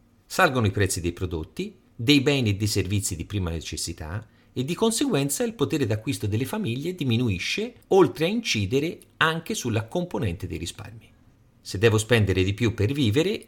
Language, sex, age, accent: Italian, male, 40-59, native